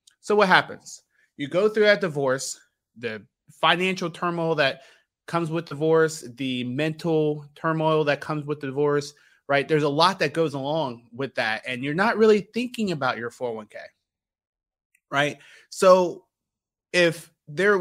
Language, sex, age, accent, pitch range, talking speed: English, male, 30-49, American, 130-165 Hz, 150 wpm